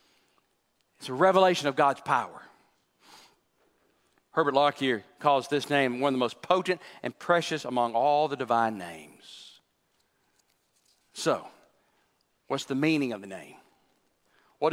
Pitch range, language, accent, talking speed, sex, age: 155-215 Hz, English, American, 125 wpm, male, 40-59